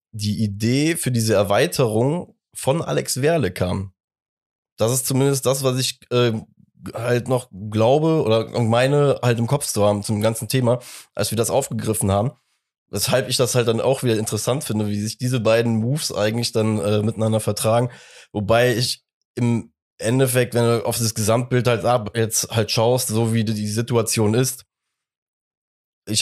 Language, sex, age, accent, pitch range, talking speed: German, male, 20-39, German, 110-125 Hz, 165 wpm